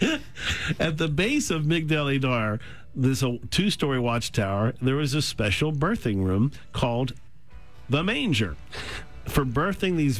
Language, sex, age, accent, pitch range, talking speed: English, male, 50-69, American, 115-145 Hz, 125 wpm